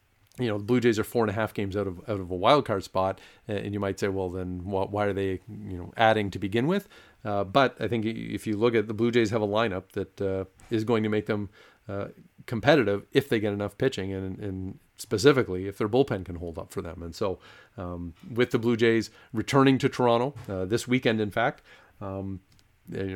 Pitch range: 95-115 Hz